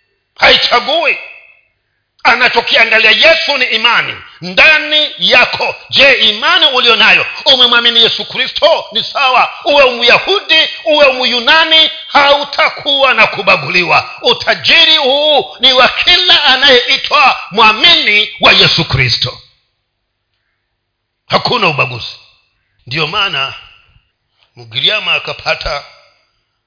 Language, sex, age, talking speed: Swahili, male, 50-69, 90 wpm